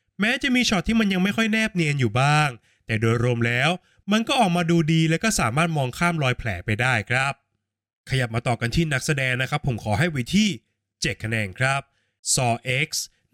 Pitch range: 120-175 Hz